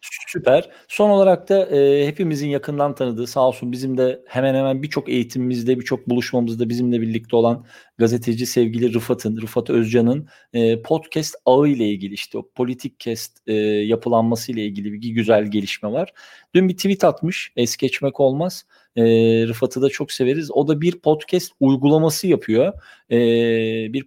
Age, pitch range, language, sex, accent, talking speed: 40-59, 120-155 Hz, Turkish, male, native, 150 wpm